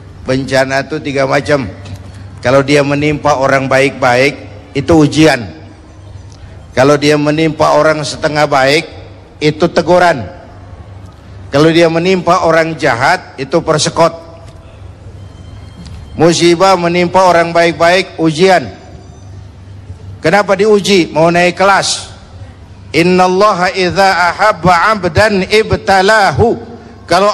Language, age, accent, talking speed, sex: Indonesian, 50-69, native, 85 wpm, male